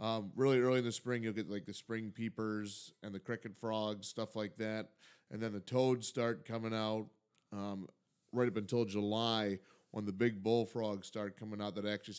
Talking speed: 195 wpm